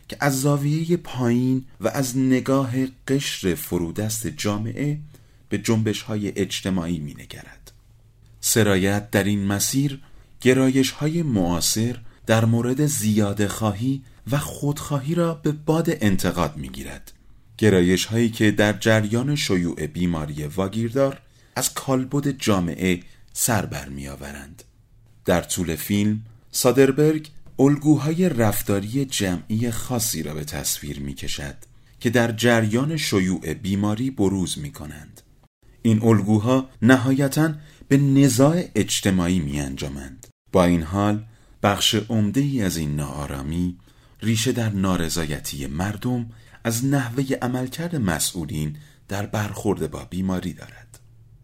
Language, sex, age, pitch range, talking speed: Persian, male, 40-59, 95-130 Hz, 110 wpm